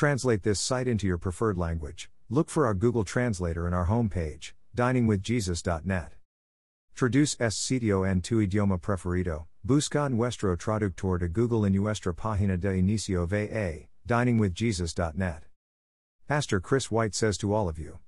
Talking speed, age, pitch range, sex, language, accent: 145 wpm, 50-69, 90-115 Hz, male, English, American